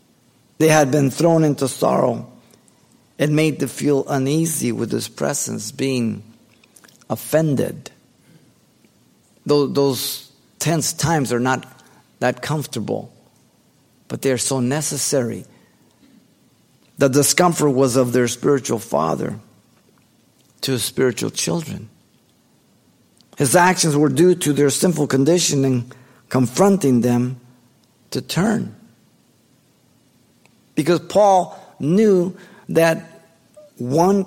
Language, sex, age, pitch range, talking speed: English, male, 50-69, 125-155 Hz, 100 wpm